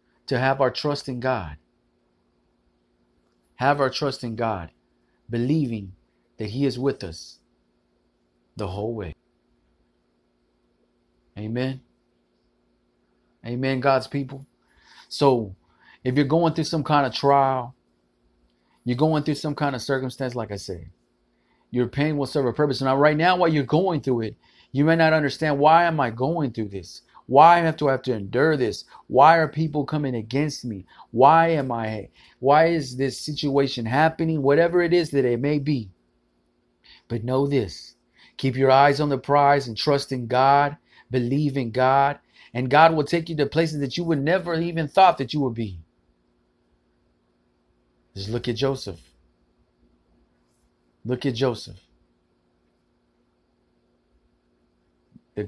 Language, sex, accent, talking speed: English, male, American, 145 wpm